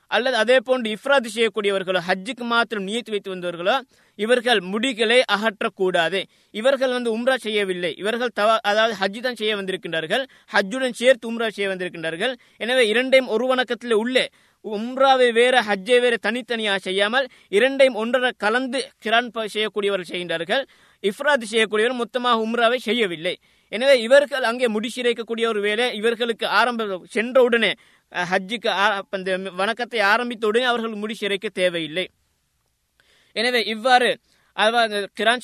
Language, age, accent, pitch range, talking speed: Tamil, 20-39, native, 200-240 Hz, 115 wpm